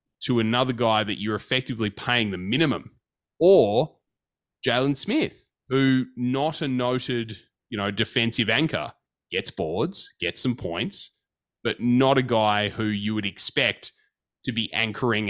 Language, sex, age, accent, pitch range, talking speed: English, male, 30-49, Australian, 100-130 Hz, 140 wpm